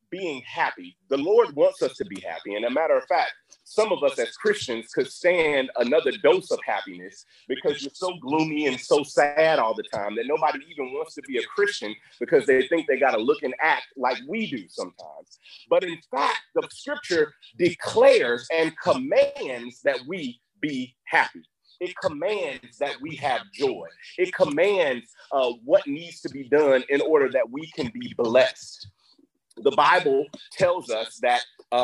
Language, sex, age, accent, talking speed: English, male, 30-49, American, 175 wpm